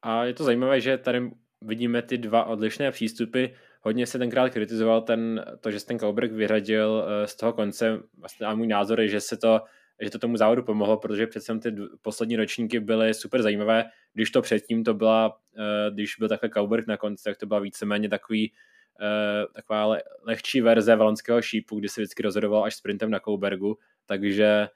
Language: Czech